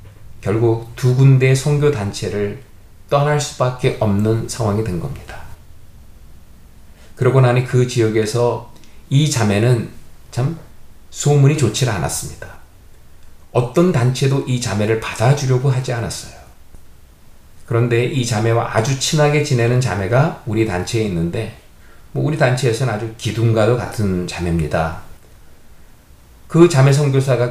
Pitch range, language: 100-135 Hz, Korean